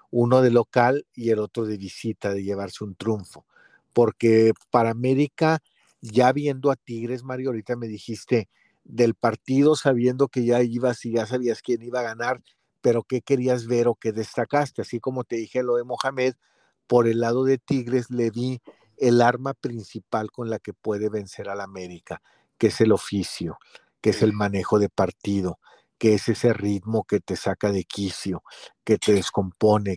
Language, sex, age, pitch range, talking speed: Spanish, male, 50-69, 105-125 Hz, 180 wpm